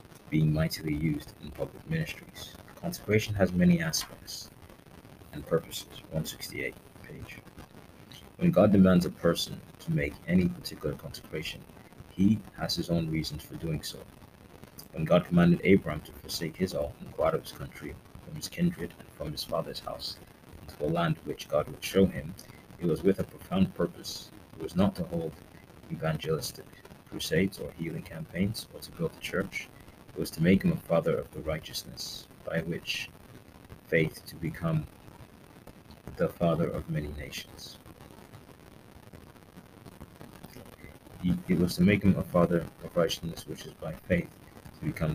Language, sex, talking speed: English, male, 155 wpm